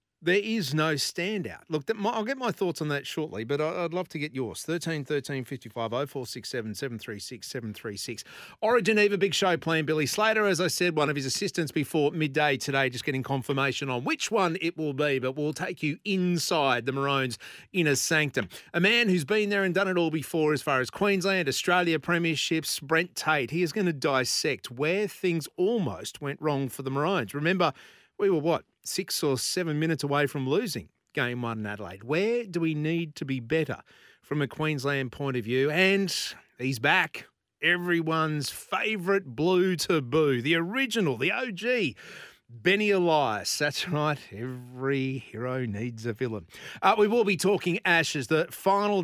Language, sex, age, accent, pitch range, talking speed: English, male, 40-59, Australian, 135-185 Hz, 175 wpm